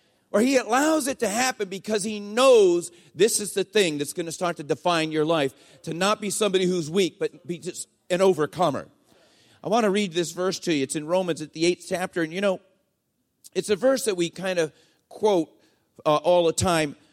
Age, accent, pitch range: 40-59, American, 170-220 Hz